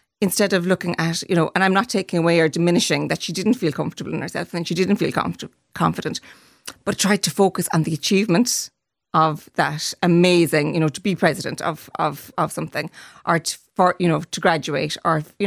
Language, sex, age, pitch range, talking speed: English, female, 30-49, 160-185 Hz, 200 wpm